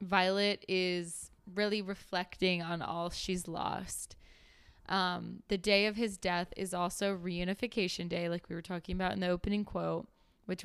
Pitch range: 170-190 Hz